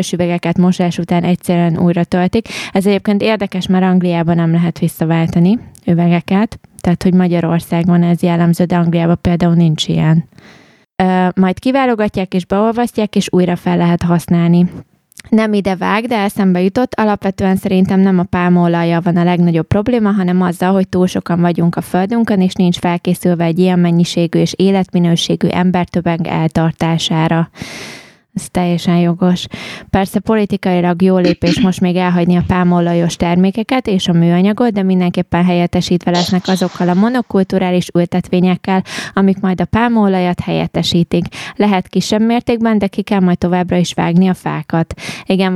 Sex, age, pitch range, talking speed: female, 20-39, 175-195 Hz, 140 wpm